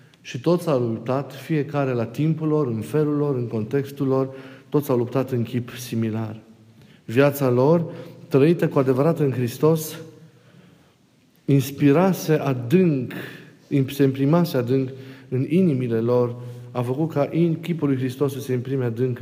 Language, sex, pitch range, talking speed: Romanian, male, 115-150 Hz, 140 wpm